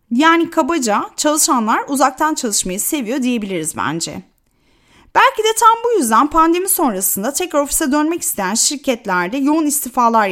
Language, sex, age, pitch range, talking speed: Turkish, female, 30-49, 225-300 Hz, 130 wpm